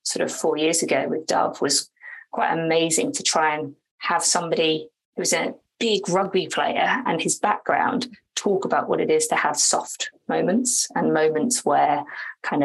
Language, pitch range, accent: English, 155-240 Hz, British